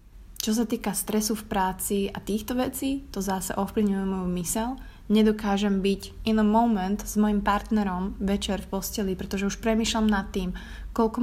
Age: 20-39